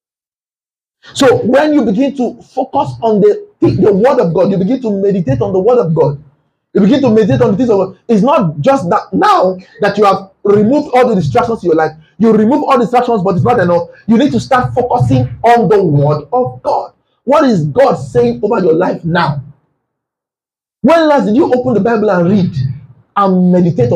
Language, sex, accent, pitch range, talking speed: English, male, Nigerian, 150-255 Hz, 210 wpm